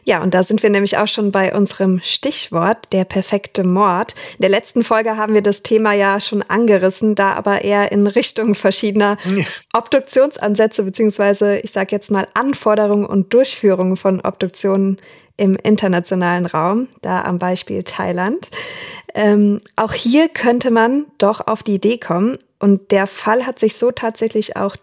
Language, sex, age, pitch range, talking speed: German, female, 20-39, 195-230 Hz, 160 wpm